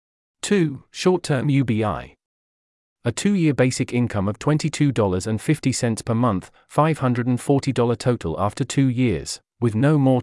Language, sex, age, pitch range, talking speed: English, male, 40-59, 110-145 Hz, 110 wpm